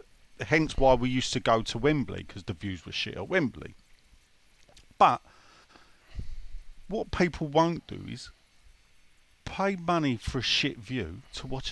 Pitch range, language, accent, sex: 95-150 Hz, English, British, male